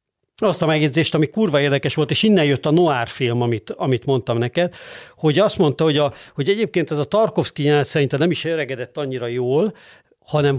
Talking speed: 200 wpm